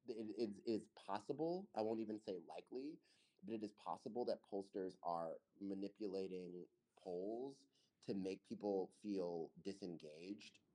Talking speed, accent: 130 wpm, American